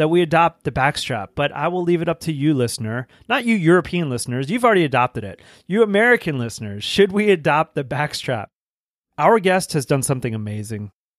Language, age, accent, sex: English, 30-49, American, male